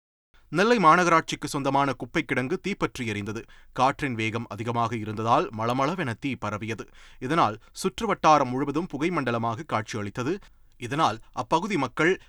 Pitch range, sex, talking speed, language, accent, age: 115-155 Hz, male, 115 wpm, Tamil, native, 30-49